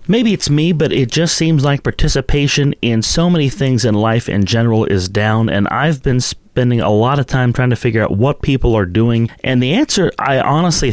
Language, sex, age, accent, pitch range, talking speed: English, male, 30-49, American, 105-130 Hz, 220 wpm